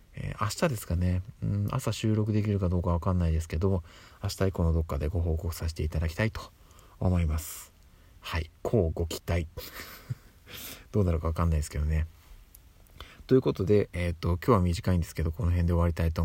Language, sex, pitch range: Japanese, male, 85-105 Hz